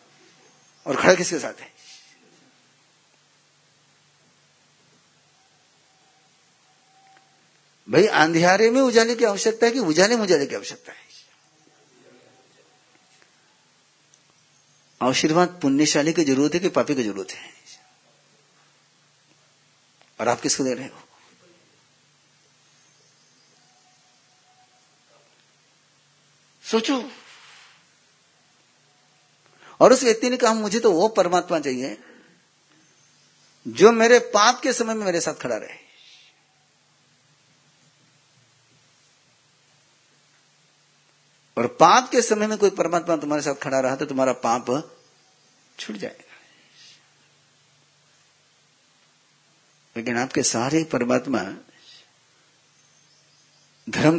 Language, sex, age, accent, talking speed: Hindi, male, 50-69, native, 85 wpm